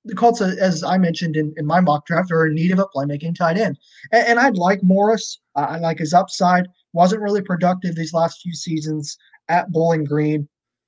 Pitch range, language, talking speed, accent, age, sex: 150-180 Hz, English, 210 wpm, American, 20-39, male